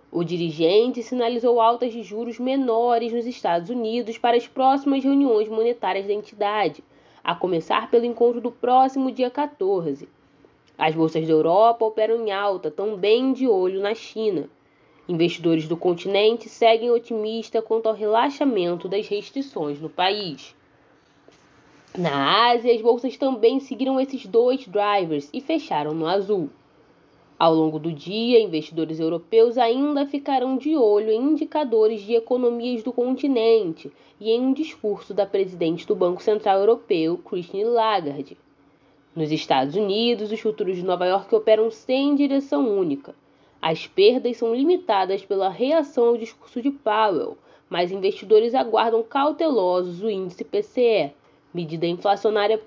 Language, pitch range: Portuguese, 190-245 Hz